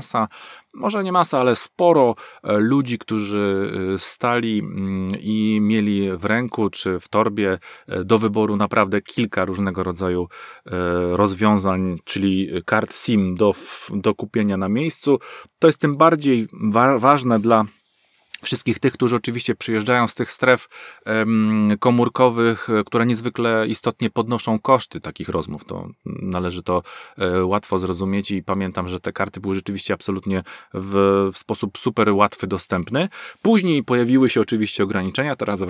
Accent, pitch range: native, 95-120 Hz